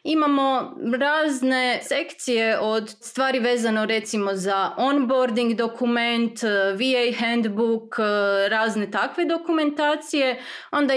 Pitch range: 215-265 Hz